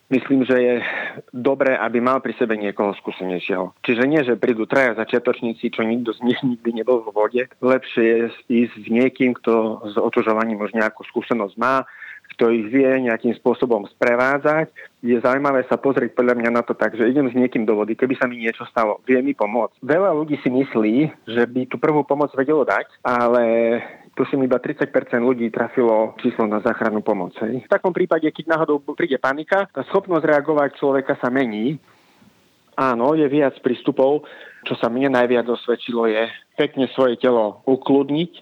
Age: 30-49